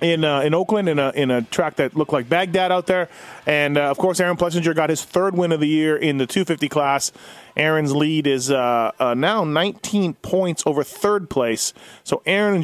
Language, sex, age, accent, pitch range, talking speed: English, male, 30-49, American, 140-180 Hz, 220 wpm